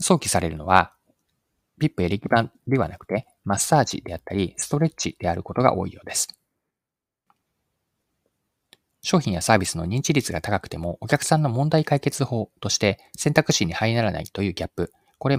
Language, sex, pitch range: Japanese, male, 90-140 Hz